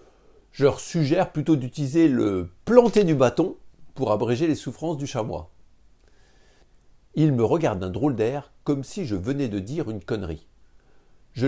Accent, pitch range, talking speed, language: French, 110-160 Hz, 155 wpm, French